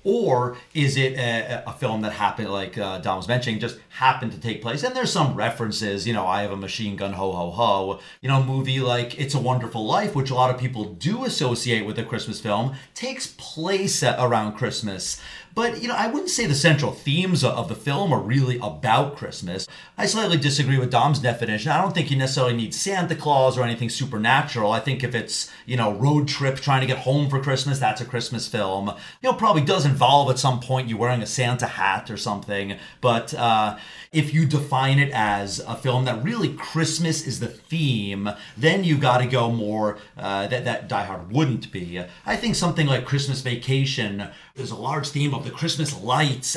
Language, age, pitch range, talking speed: English, 30-49, 105-140 Hz, 215 wpm